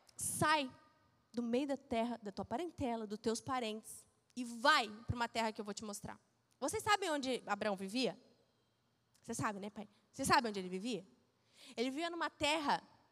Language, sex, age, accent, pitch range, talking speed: Portuguese, female, 20-39, Brazilian, 235-325 Hz, 180 wpm